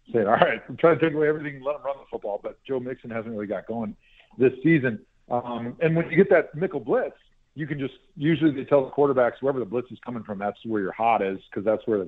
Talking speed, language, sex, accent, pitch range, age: 270 wpm, English, male, American, 120-160 Hz, 50-69